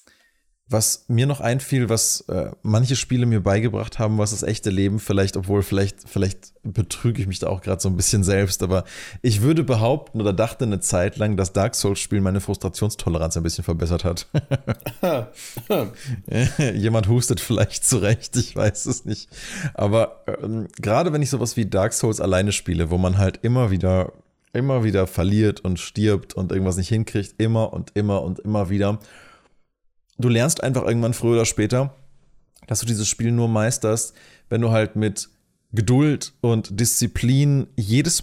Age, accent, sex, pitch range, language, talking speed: 20-39, German, male, 100-125 Hz, German, 170 wpm